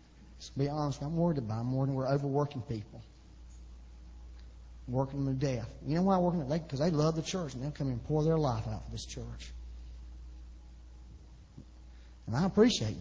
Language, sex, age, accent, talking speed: English, male, 40-59, American, 190 wpm